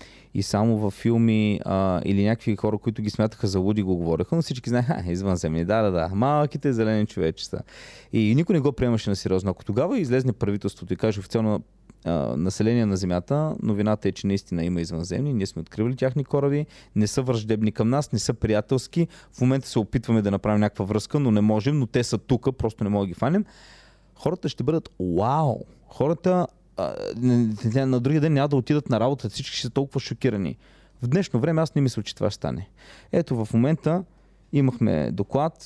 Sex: male